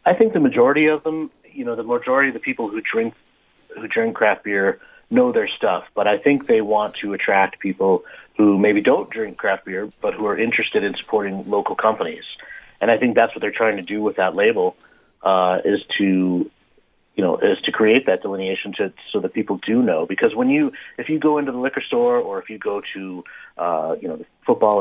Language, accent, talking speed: English, American, 225 wpm